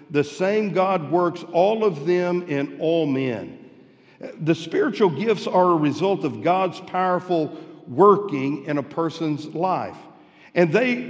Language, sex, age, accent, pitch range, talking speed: English, male, 50-69, American, 170-225 Hz, 140 wpm